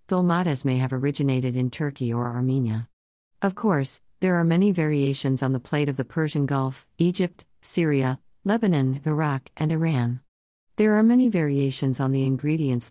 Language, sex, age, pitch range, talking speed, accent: English, female, 50-69, 125-170 Hz, 160 wpm, American